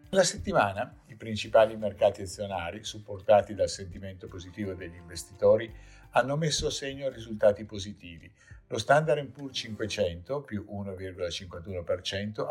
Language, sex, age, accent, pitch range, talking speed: Italian, male, 50-69, native, 90-125 Hz, 115 wpm